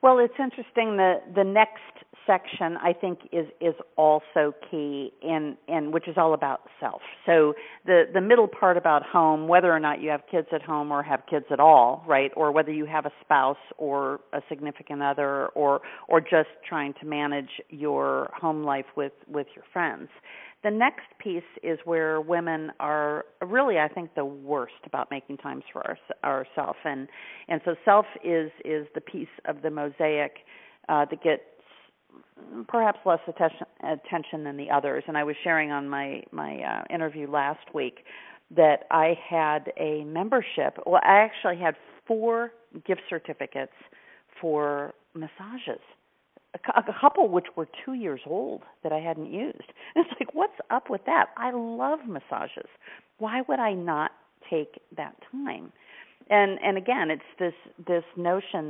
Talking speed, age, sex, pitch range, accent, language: 165 wpm, 50-69, female, 150-200 Hz, American, English